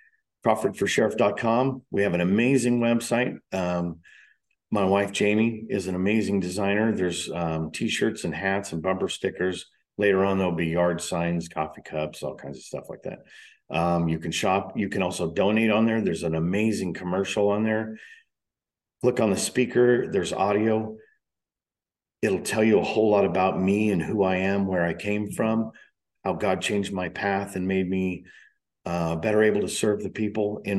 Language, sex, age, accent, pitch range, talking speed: English, male, 50-69, American, 90-110 Hz, 175 wpm